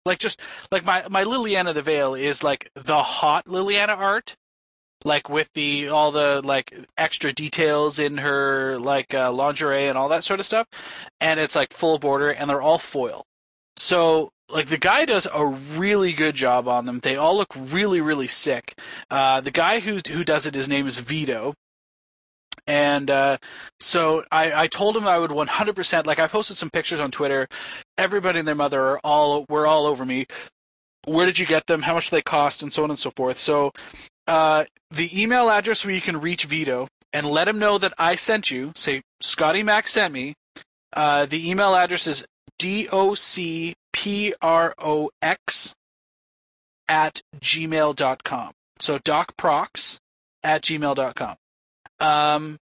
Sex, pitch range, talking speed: male, 140-180 Hz, 180 wpm